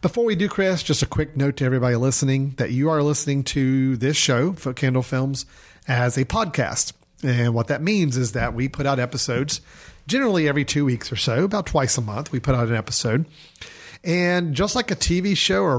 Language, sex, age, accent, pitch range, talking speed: English, male, 40-59, American, 120-150 Hz, 215 wpm